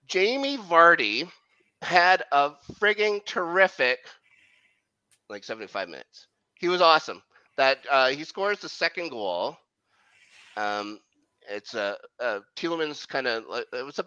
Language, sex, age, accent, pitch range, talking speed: English, male, 30-49, American, 110-175 Hz, 120 wpm